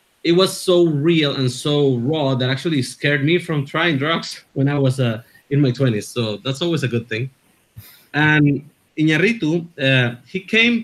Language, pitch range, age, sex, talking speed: English, 125-150 Hz, 30-49, male, 170 wpm